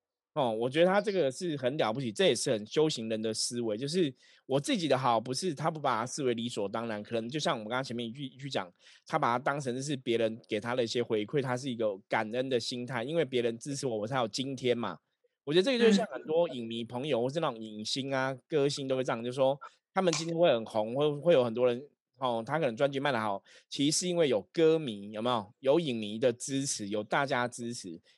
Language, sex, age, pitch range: Chinese, male, 20-39, 115-150 Hz